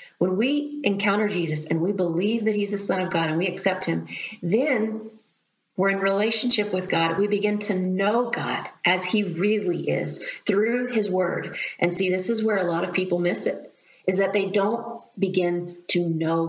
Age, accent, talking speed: 40-59, American, 195 wpm